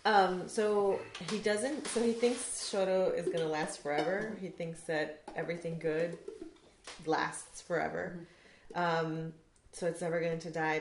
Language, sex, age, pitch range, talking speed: English, female, 30-49, 160-185 Hz, 140 wpm